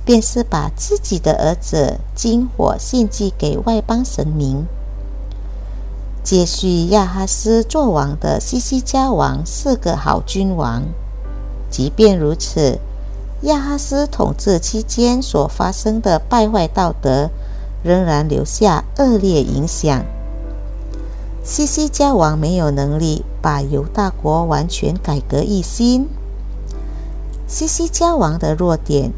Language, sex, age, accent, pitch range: Indonesian, female, 50-69, American, 150-230 Hz